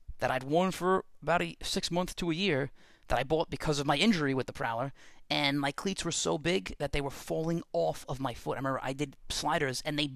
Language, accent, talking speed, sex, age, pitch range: English, American, 240 wpm, male, 30-49, 130-170 Hz